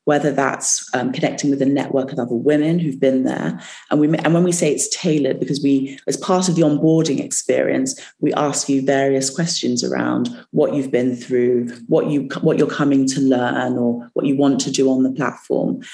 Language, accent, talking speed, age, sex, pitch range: English, British, 205 wpm, 30-49, female, 130-155 Hz